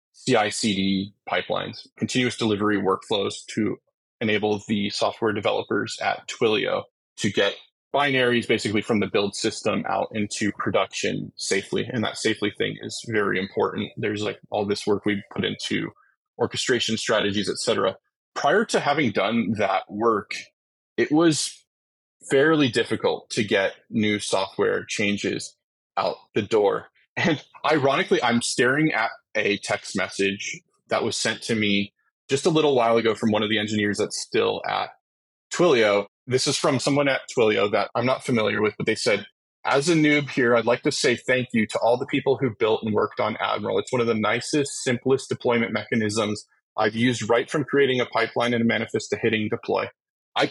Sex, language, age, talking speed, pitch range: male, English, 20-39, 170 wpm, 105-130 Hz